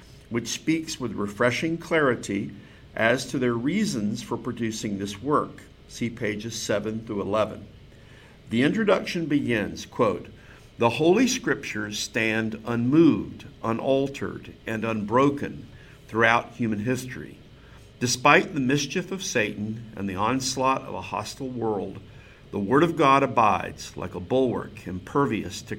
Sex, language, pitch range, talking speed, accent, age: male, English, 105-140 Hz, 130 wpm, American, 50-69